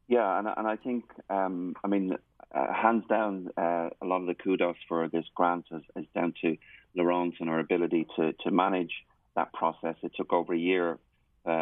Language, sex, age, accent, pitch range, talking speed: English, male, 30-49, British, 85-95 Hz, 200 wpm